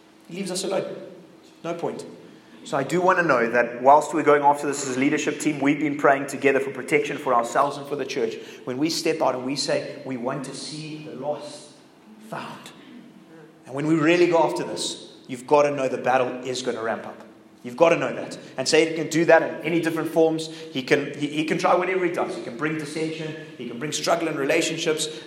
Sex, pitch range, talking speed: male, 130-160 Hz, 235 wpm